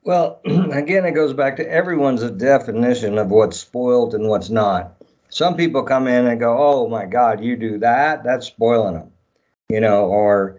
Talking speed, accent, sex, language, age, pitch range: 180 wpm, American, male, English, 50-69, 110-135 Hz